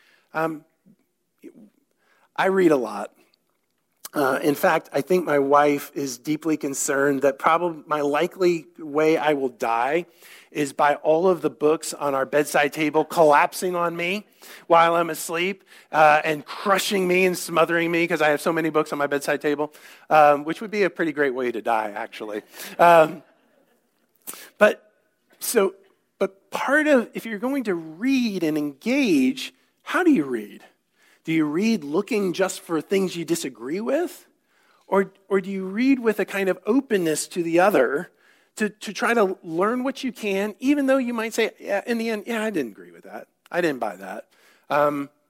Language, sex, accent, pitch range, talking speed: English, male, American, 150-195 Hz, 180 wpm